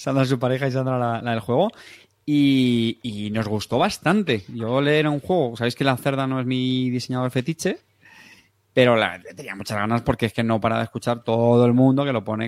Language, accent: Spanish, Spanish